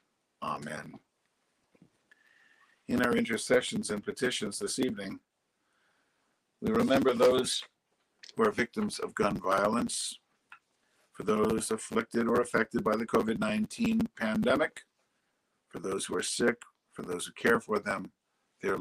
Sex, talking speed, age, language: male, 125 wpm, 50-69, English